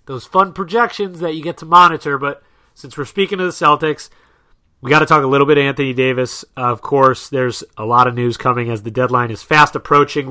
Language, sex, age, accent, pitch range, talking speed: English, male, 30-49, American, 125-155 Hz, 225 wpm